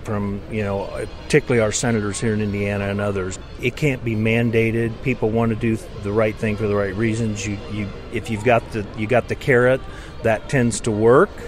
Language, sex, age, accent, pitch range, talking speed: English, male, 40-59, American, 105-120 Hz, 210 wpm